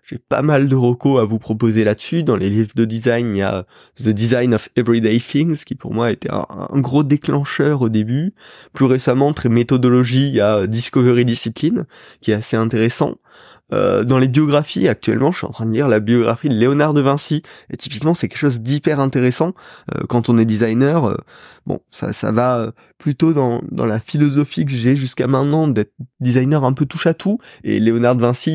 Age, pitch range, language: 20-39, 115-140 Hz, French